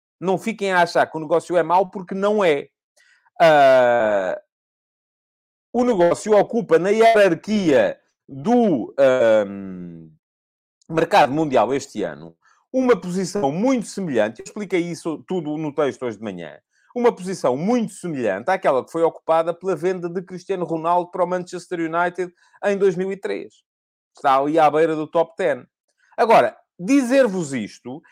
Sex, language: male, Portuguese